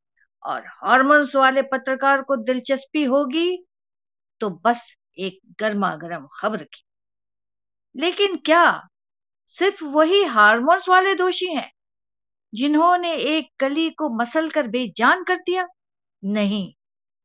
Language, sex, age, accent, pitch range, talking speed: Hindi, female, 50-69, native, 185-305 Hz, 110 wpm